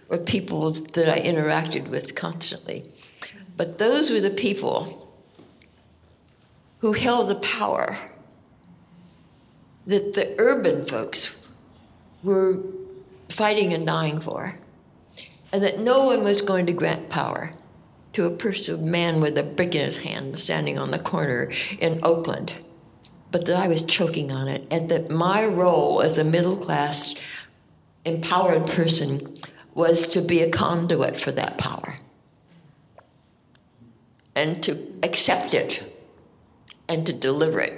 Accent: American